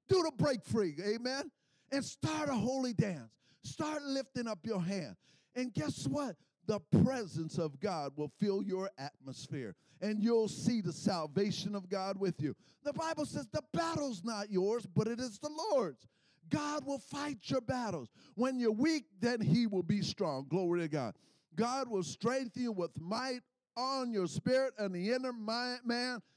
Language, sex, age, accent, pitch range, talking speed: English, male, 50-69, American, 175-250 Hz, 175 wpm